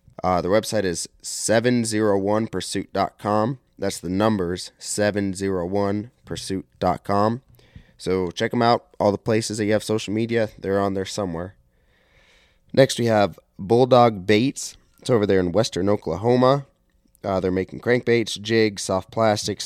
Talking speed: 130 wpm